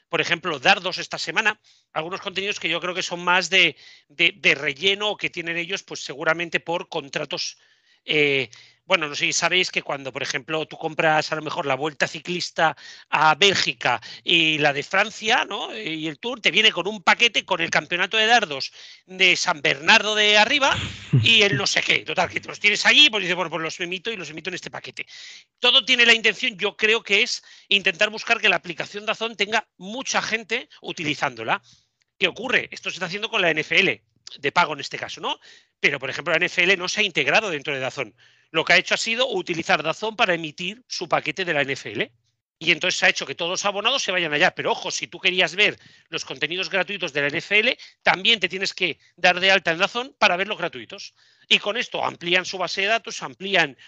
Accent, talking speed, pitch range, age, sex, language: Spanish, 215 wpm, 160-205 Hz, 40-59, male, Spanish